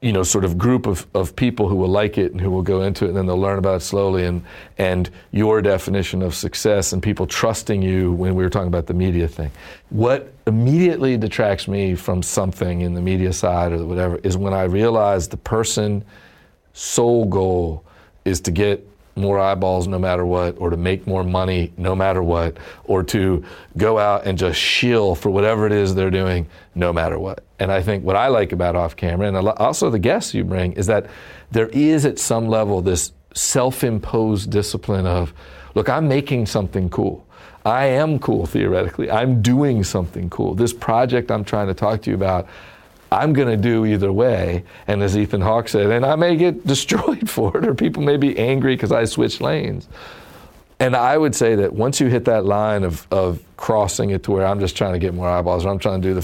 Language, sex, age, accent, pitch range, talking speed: English, male, 50-69, American, 90-110 Hz, 215 wpm